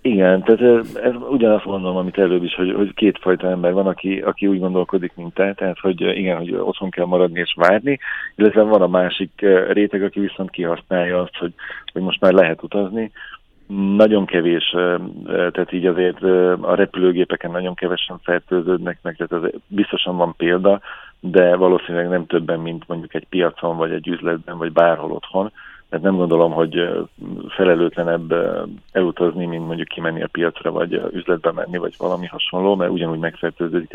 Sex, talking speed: male, 165 wpm